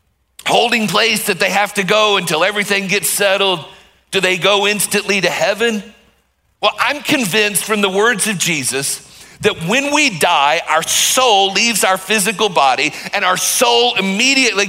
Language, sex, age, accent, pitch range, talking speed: English, male, 50-69, American, 180-220 Hz, 160 wpm